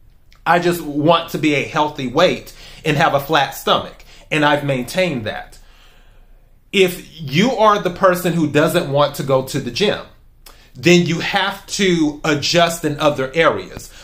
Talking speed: 160 wpm